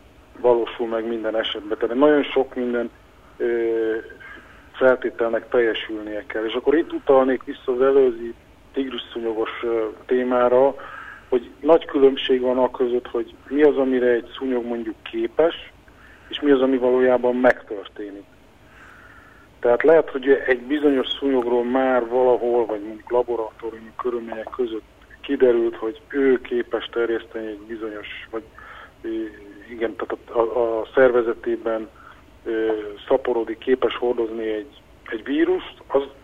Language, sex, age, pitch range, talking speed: Hungarian, male, 50-69, 115-135 Hz, 130 wpm